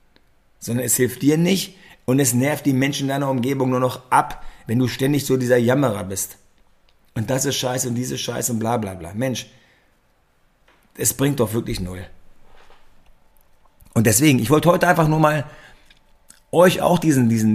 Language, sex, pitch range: German, male, 115-150 Hz